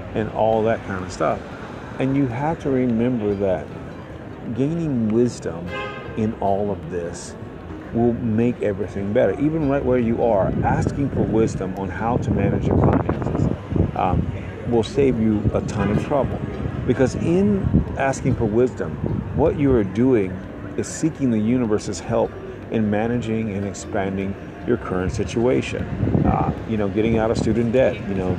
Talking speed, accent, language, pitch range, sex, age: 155 wpm, American, English, 100-120 Hz, male, 50-69